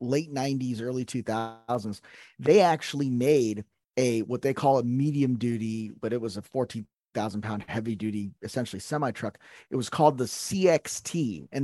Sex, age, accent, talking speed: male, 30-49, American, 160 wpm